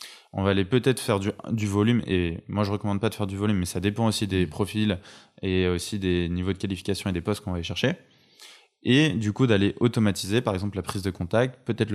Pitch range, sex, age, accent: 95-115 Hz, male, 20-39, French